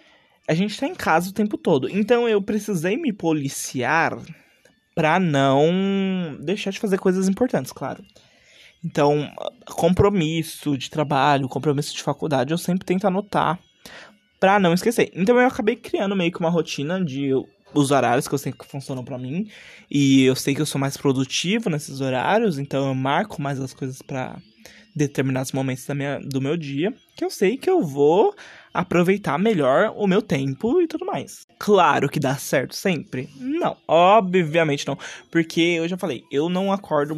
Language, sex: Portuguese, male